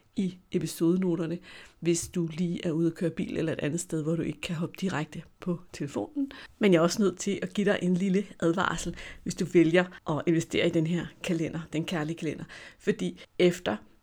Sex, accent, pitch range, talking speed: female, native, 165-185 Hz, 205 wpm